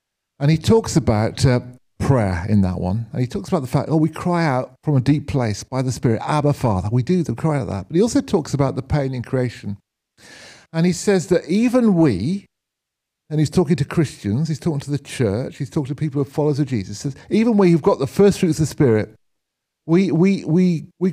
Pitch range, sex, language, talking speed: 130-190 Hz, male, English, 235 wpm